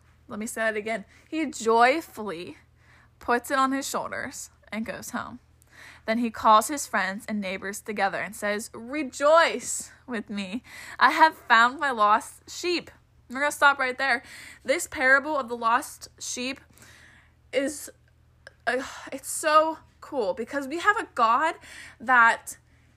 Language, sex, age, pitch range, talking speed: English, female, 20-39, 230-295 Hz, 145 wpm